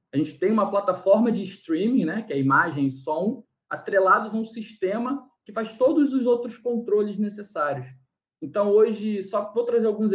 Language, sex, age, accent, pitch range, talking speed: Portuguese, male, 20-39, Brazilian, 150-210 Hz, 175 wpm